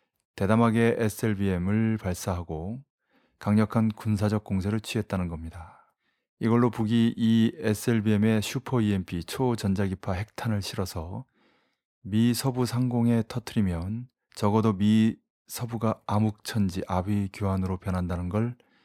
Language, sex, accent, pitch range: Korean, male, native, 100-120 Hz